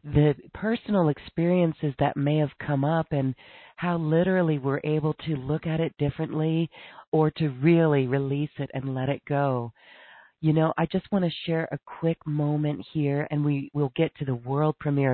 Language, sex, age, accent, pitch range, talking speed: English, female, 40-59, American, 135-160 Hz, 180 wpm